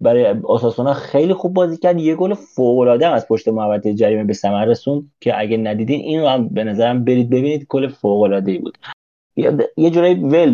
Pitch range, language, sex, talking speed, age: 125-170 Hz, Persian, male, 190 wpm, 30-49